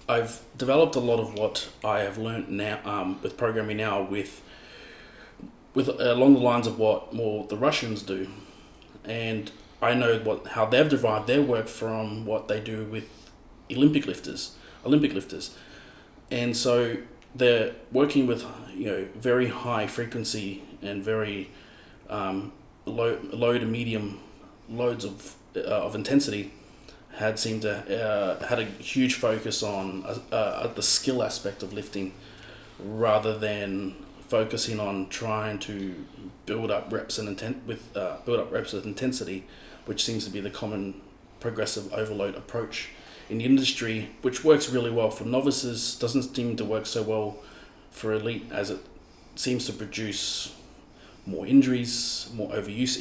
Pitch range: 105-120 Hz